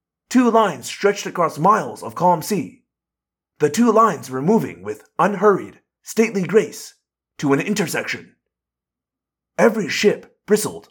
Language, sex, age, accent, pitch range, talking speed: English, male, 30-49, American, 150-240 Hz, 125 wpm